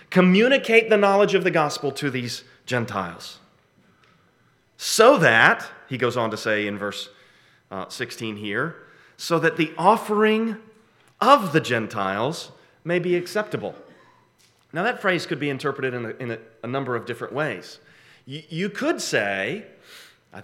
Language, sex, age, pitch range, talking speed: English, male, 30-49, 130-190 Hz, 145 wpm